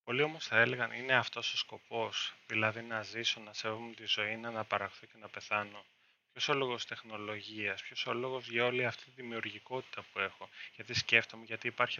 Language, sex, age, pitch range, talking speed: English, male, 20-39, 110-125 Hz, 190 wpm